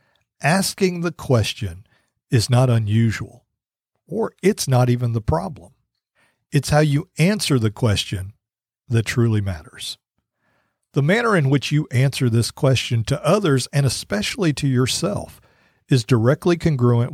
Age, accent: 50-69, American